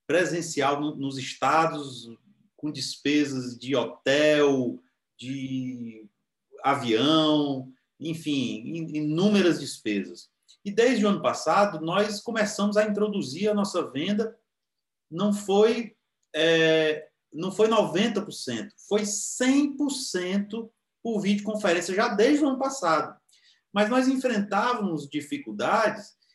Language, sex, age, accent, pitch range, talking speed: Portuguese, male, 30-49, Brazilian, 155-225 Hz, 95 wpm